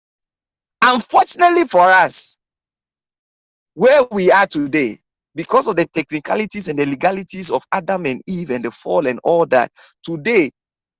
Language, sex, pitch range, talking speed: English, male, 125-185 Hz, 135 wpm